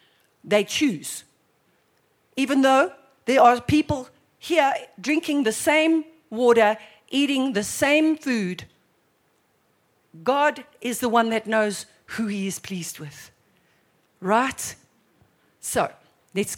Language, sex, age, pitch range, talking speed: English, female, 50-69, 205-275 Hz, 110 wpm